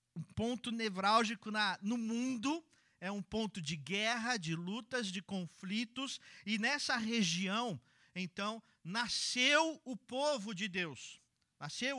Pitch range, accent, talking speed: 185-250 Hz, Brazilian, 125 wpm